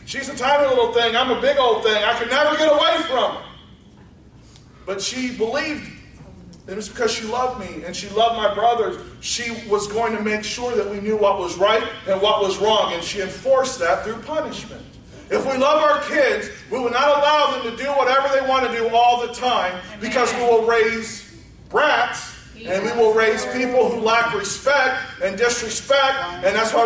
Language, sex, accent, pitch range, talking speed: English, male, American, 220-270 Hz, 205 wpm